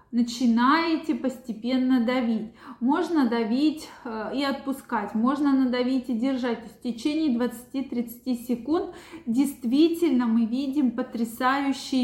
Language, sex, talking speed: Russian, female, 95 wpm